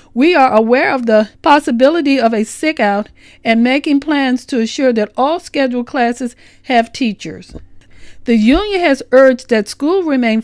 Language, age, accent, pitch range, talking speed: English, 50-69, American, 225-290 Hz, 160 wpm